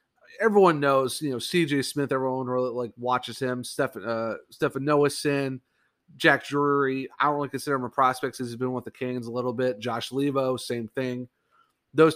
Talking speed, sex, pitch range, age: 190 wpm, male, 125-145 Hz, 30-49